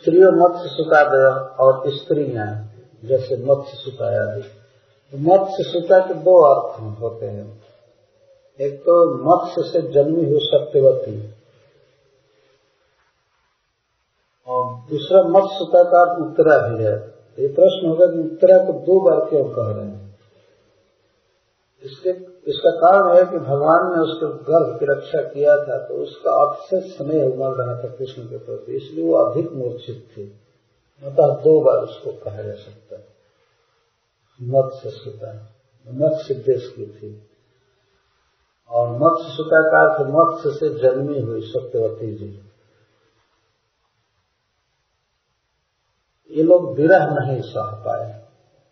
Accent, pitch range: native, 120-190 Hz